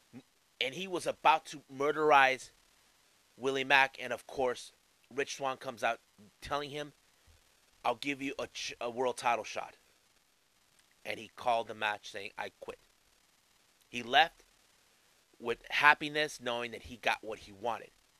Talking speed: 145 wpm